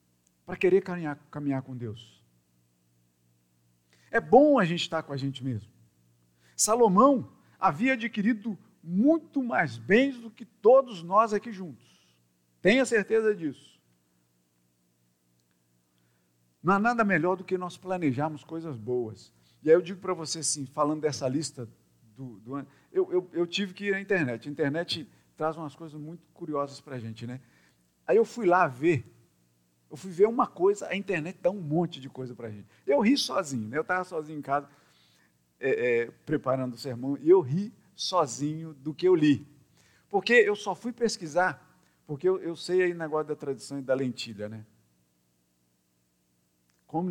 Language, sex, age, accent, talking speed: Portuguese, male, 50-69, Brazilian, 165 wpm